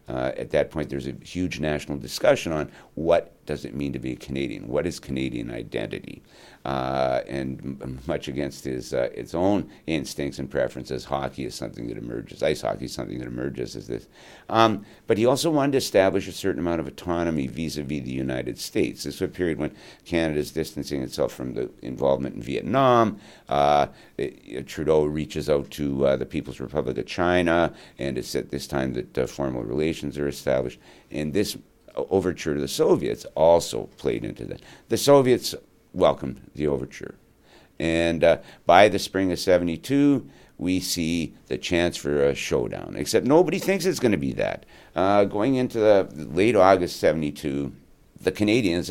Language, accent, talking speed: English, American, 185 wpm